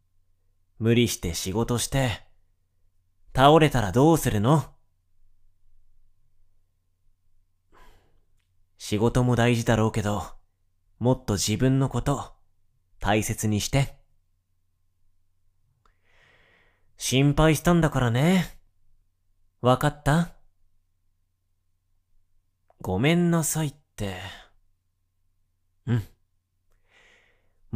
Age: 30-49